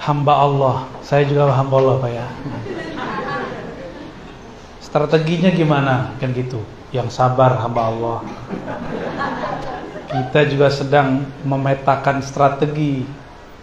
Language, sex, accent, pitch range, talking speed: Indonesian, male, native, 135-180 Hz, 90 wpm